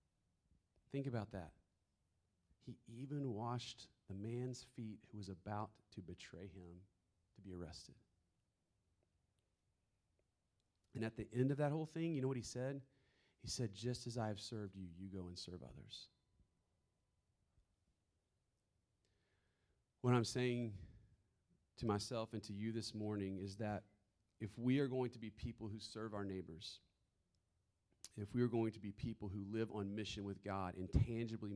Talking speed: 155 wpm